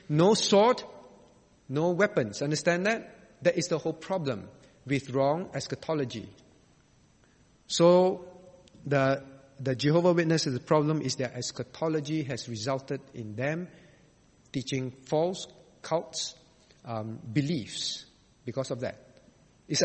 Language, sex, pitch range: English, male, 135-180 Hz